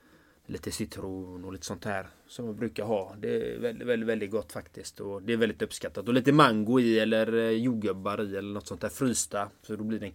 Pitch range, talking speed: 105-130 Hz, 220 wpm